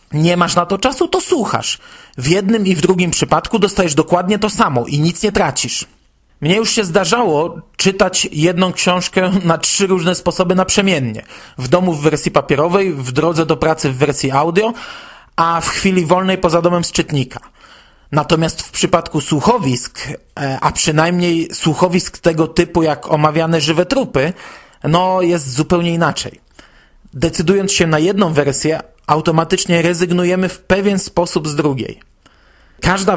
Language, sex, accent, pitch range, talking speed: Polish, male, native, 155-195 Hz, 150 wpm